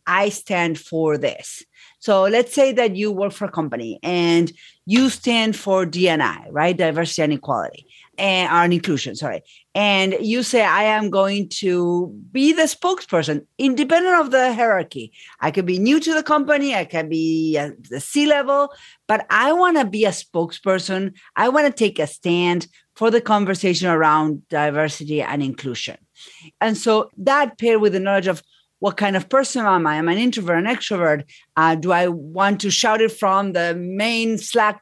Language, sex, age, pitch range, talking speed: English, female, 40-59, 170-230 Hz, 175 wpm